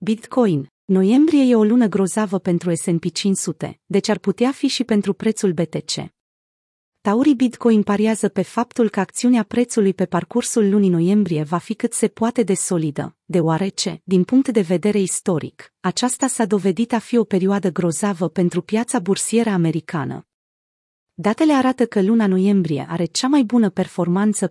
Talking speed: 155 wpm